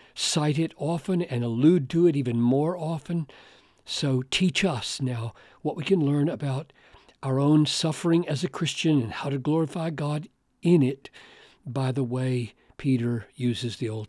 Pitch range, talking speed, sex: 130-180 Hz, 165 wpm, male